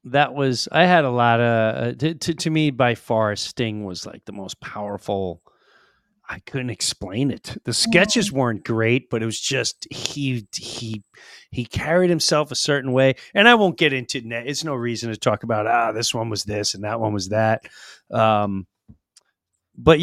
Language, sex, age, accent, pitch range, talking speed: English, male, 30-49, American, 105-145 Hz, 190 wpm